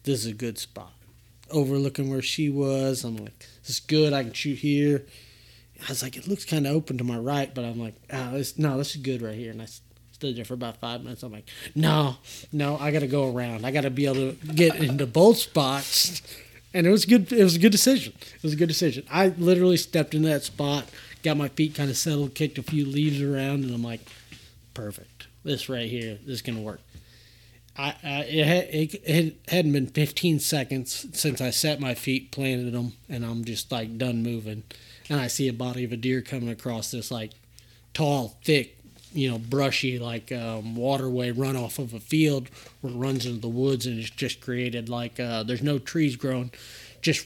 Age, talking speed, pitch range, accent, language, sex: 30-49, 215 wpm, 115-145 Hz, American, English, male